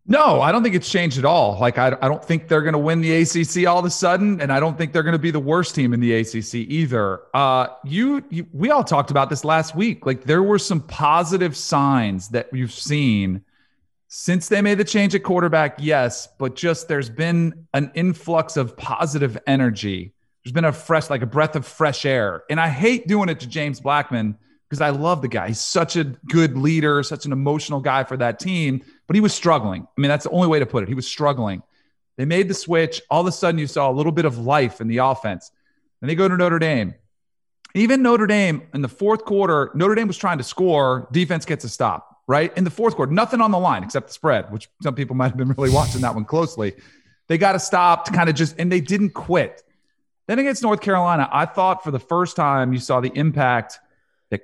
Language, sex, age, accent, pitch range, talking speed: English, male, 40-59, American, 130-175 Hz, 240 wpm